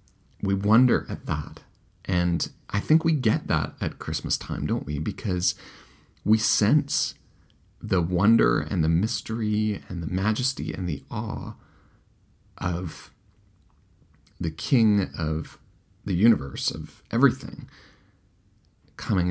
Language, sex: English, male